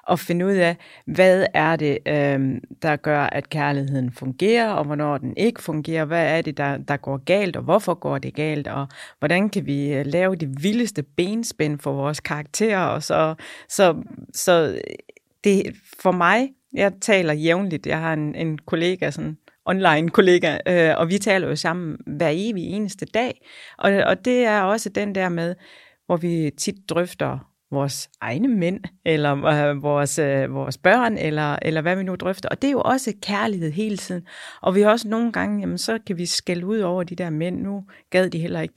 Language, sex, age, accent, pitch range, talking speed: Danish, female, 30-49, native, 150-200 Hz, 195 wpm